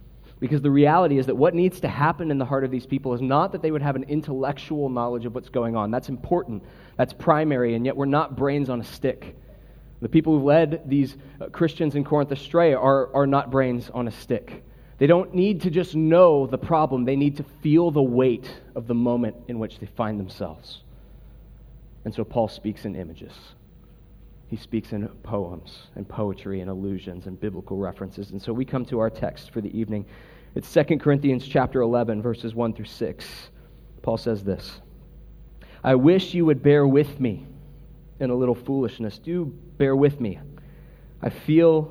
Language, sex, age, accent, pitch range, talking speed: English, male, 30-49, American, 115-145 Hz, 190 wpm